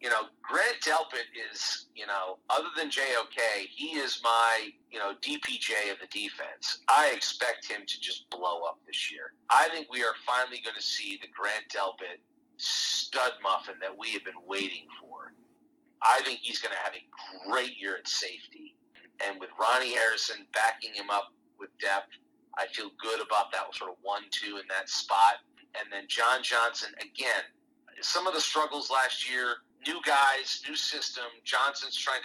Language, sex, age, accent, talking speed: English, male, 40-59, American, 175 wpm